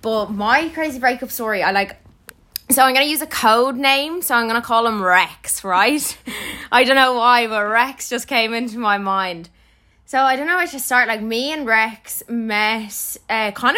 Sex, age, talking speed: female, 20-39, 210 wpm